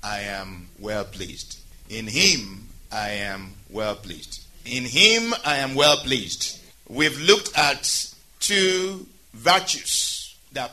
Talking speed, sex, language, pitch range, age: 125 wpm, male, English, 120-160 Hz, 50-69